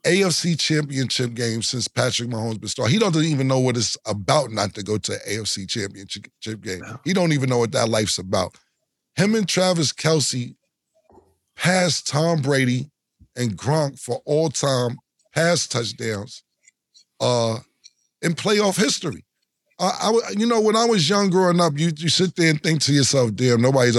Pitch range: 115-180 Hz